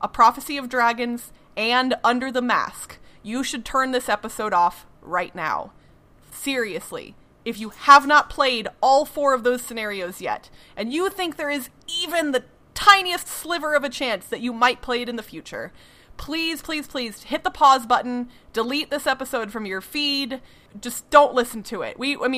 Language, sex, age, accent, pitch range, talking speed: English, female, 30-49, American, 215-280 Hz, 185 wpm